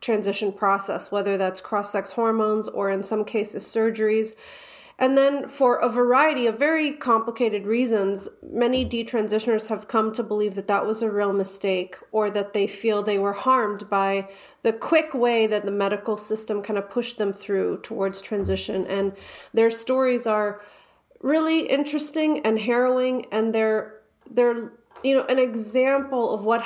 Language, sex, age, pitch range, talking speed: English, female, 30-49, 210-245 Hz, 160 wpm